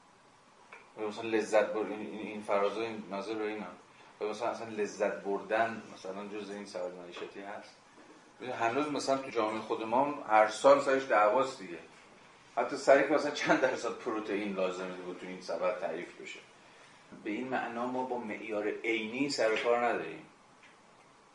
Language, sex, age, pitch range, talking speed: Persian, male, 30-49, 100-125 Hz, 155 wpm